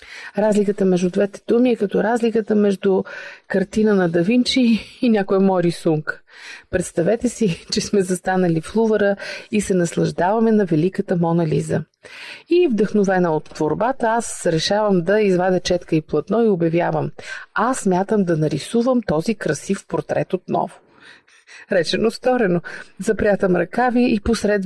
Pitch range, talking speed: 180-220 Hz, 135 wpm